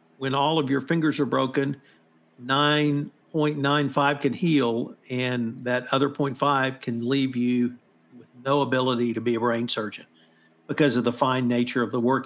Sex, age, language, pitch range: male, 50-69, English, 120-145 Hz